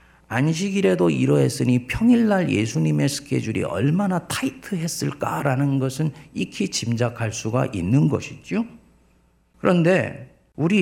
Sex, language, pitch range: male, Korean, 115-170 Hz